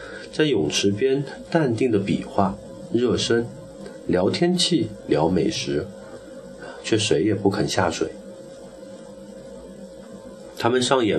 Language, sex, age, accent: Chinese, male, 30-49, native